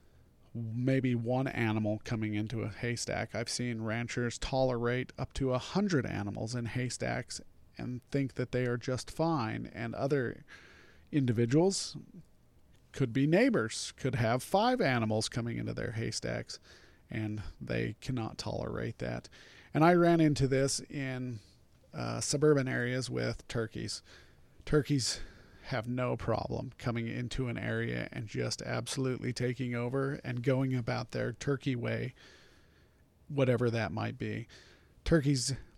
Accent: American